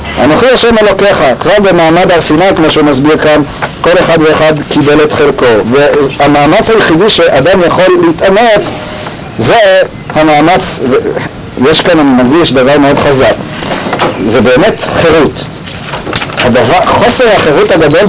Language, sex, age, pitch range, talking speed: Hebrew, male, 50-69, 145-170 Hz, 125 wpm